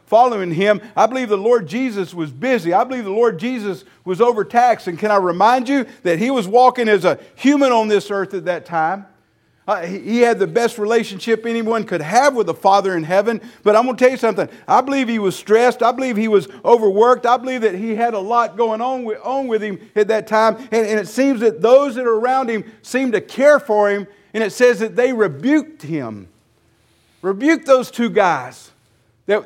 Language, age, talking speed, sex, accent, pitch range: English, 50-69, 220 wpm, male, American, 195-250 Hz